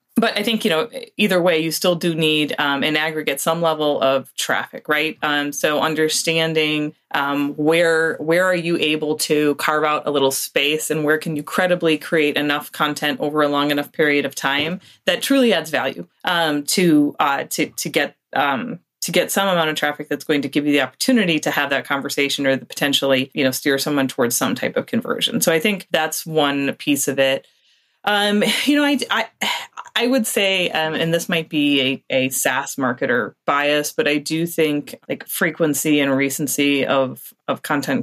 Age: 30-49